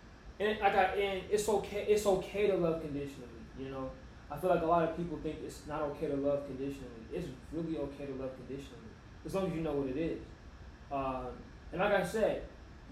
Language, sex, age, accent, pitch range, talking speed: English, male, 20-39, American, 135-195 Hz, 220 wpm